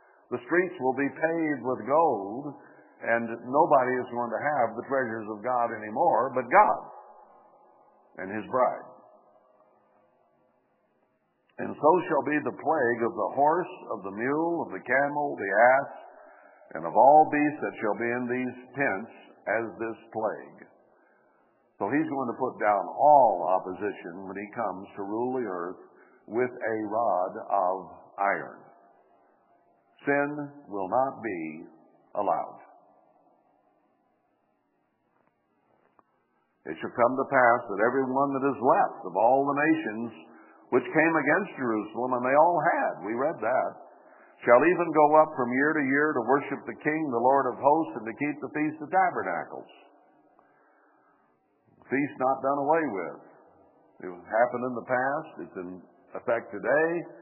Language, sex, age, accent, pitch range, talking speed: English, male, 60-79, American, 115-145 Hz, 145 wpm